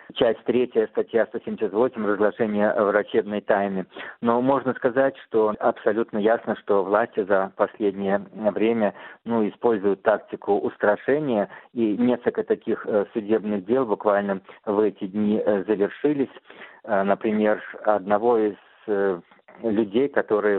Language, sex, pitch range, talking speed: Russian, male, 100-115 Hz, 110 wpm